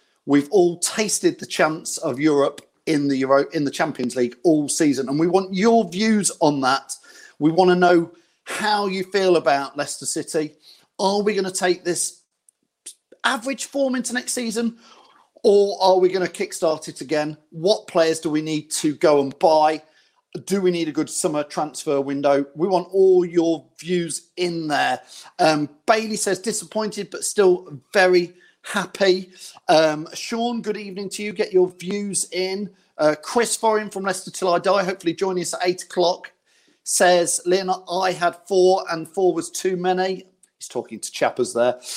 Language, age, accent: English, 40-59, British